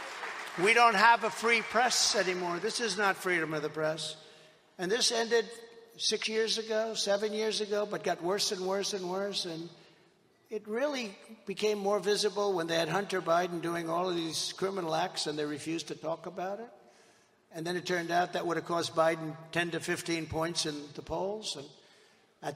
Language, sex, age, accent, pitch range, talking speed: English, male, 60-79, American, 165-210 Hz, 195 wpm